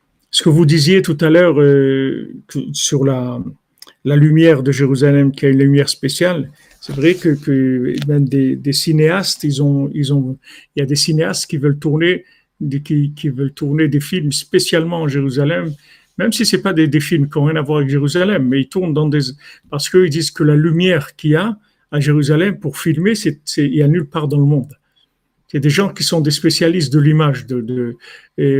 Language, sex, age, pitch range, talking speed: French, male, 50-69, 140-165 Hz, 210 wpm